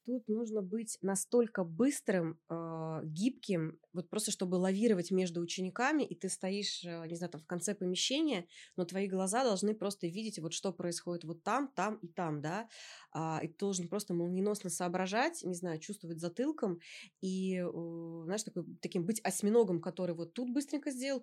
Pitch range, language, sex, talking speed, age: 170-205 Hz, Russian, female, 165 wpm, 20-39